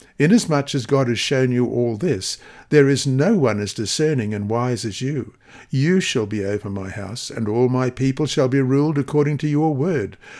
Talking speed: 200 wpm